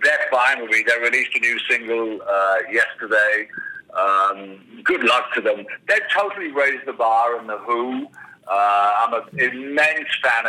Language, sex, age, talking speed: English, male, 60-79, 160 wpm